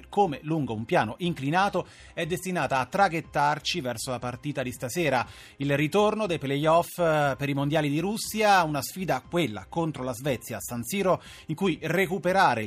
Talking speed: 165 wpm